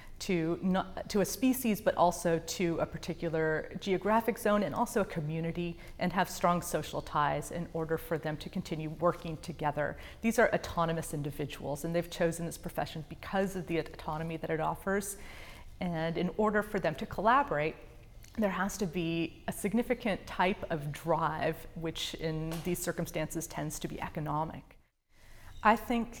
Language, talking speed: English, 160 wpm